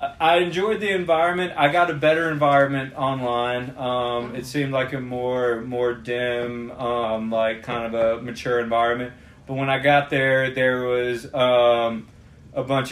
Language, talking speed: English, 165 wpm